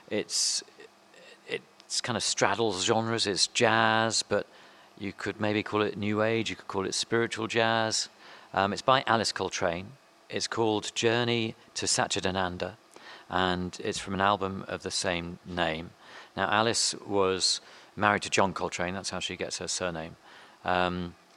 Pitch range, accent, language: 85-105 Hz, British, English